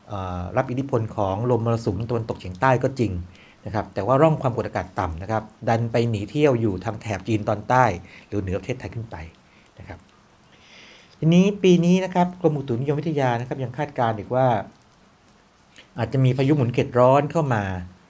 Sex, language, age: male, Thai, 60-79